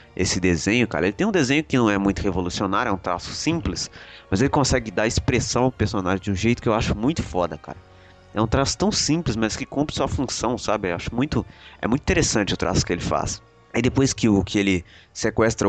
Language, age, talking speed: Portuguese, 20-39, 225 wpm